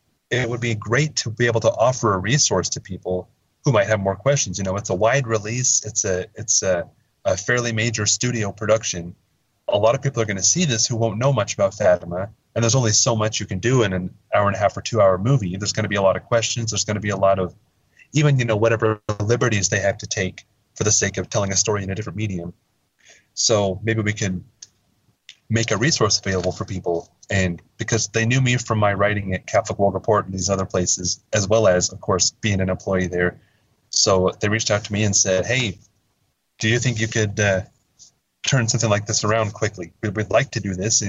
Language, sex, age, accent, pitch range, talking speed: English, male, 30-49, American, 95-115 Hz, 235 wpm